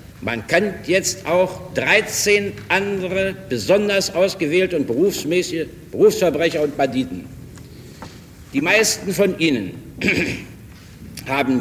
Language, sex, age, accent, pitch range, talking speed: German, male, 60-79, German, 130-190 Hz, 95 wpm